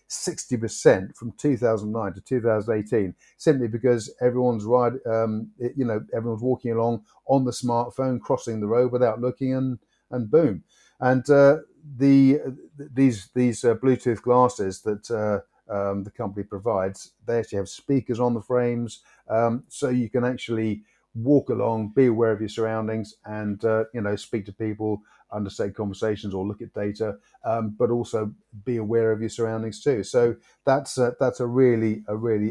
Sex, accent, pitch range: male, British, 110-125 Hz